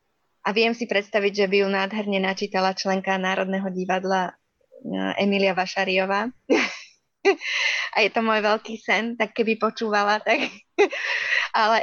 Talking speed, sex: 125 wpm, female